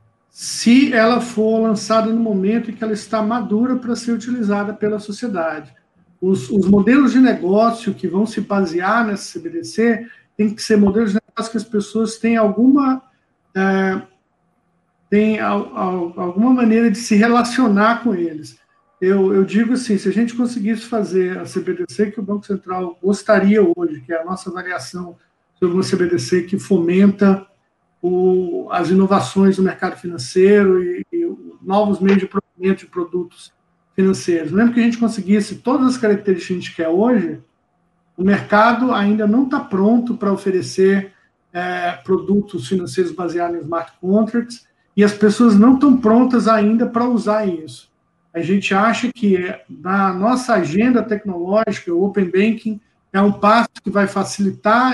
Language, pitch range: Portuguese, 185-225 Hz